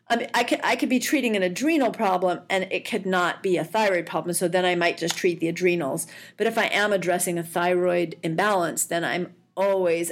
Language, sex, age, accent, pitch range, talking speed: English, female, 40-59, American, 175-220 Hz, 215 wpm